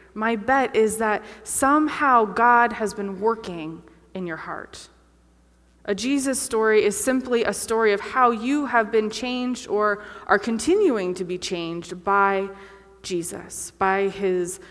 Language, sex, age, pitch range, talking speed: English, female, 20-39, 190-240 Hz, 145 wpm